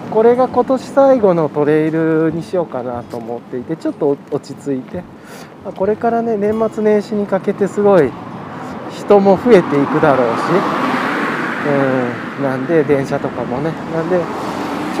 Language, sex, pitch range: Japanese, male, 150-230 Hz